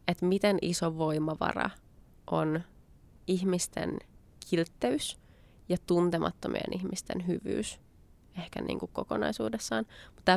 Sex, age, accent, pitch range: female, 20-39, native, 165-195 Hz